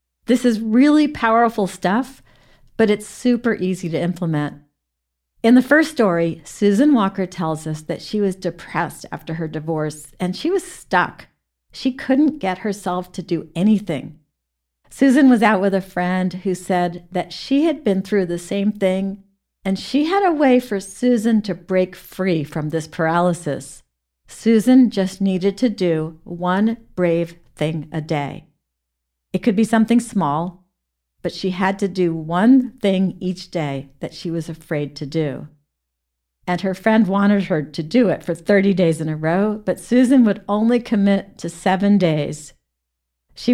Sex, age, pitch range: female, 50-69, 155-215 Hz